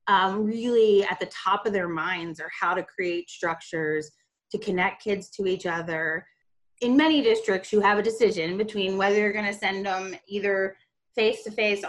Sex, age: female, 30-49